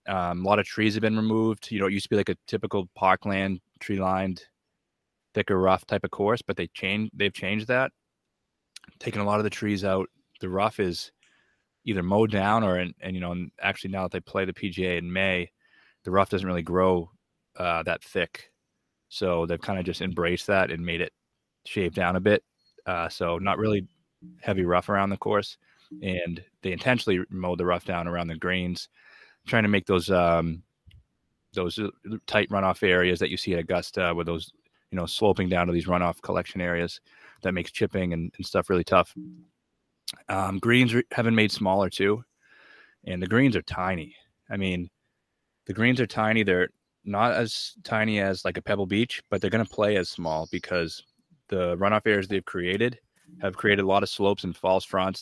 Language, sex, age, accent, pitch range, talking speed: English, male, 20-39, American, 90-105 Hz, 195 wpm